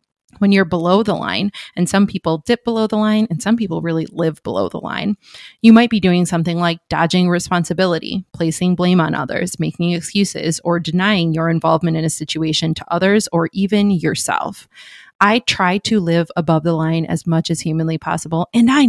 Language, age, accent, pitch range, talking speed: English, 20-39, American, 165-205 Hz, 190 wpm